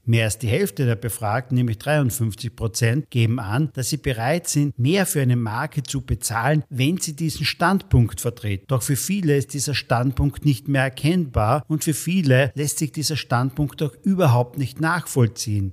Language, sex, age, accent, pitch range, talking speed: German, male, 50-69, German, 120-155 Hz, 170 wpm